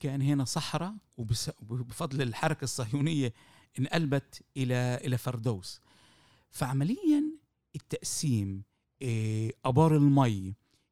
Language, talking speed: Arabic, 70 wpm